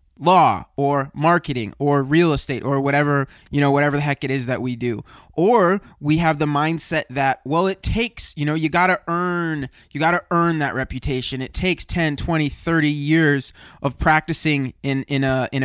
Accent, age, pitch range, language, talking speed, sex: American, 20-39, 135-170 Hz, English, 195 wpm, male